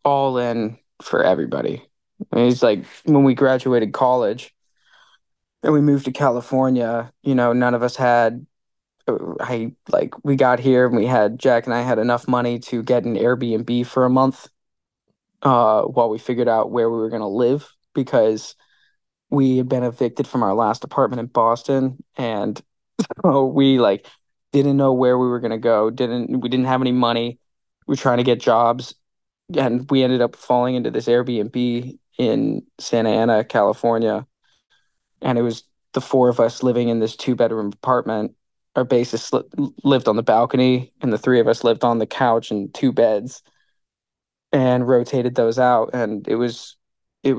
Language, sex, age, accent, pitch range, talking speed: English, male, 20-39, American, 115-130 Hz, 175 wpm